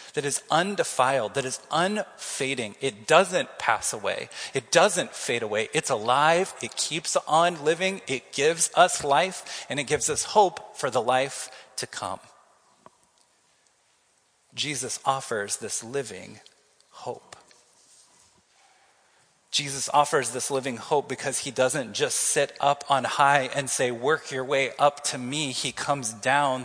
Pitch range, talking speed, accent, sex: 130-150 Hz, 140 wpm, American, male